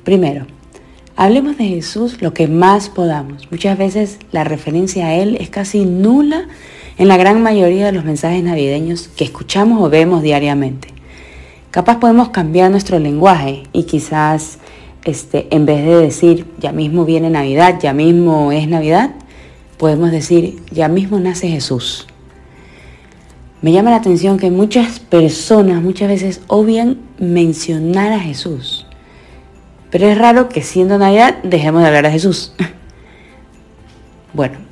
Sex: female